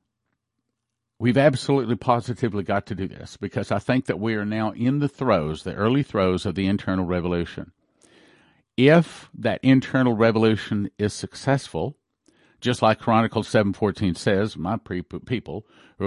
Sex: male